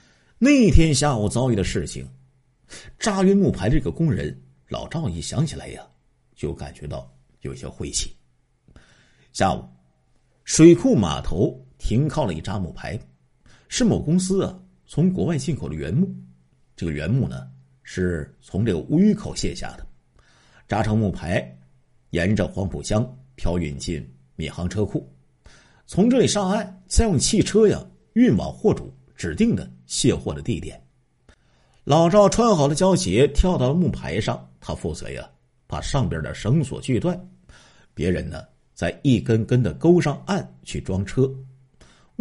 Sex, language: male, Chinese